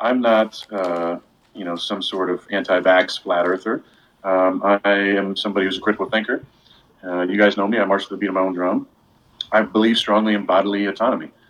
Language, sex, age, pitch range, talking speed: English, male, 30-49, 90-110 Hz, 205 wpm